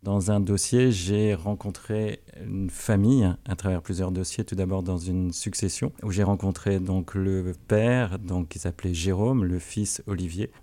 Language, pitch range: French, 95-110 Hz